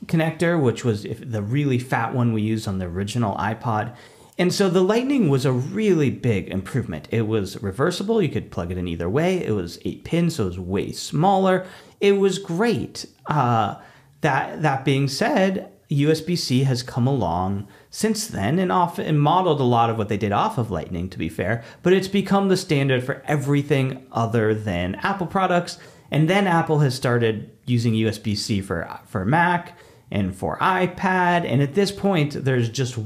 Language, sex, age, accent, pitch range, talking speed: English, male, 40-59, American, 105-170 Hz, 185 wpm